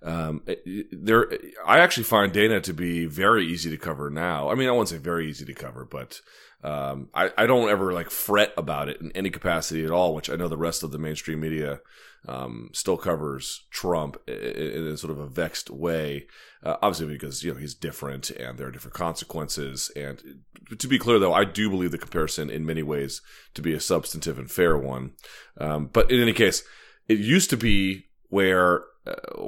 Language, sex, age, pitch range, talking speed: English, male, 30-49, 80-105 Hz, 210 wpm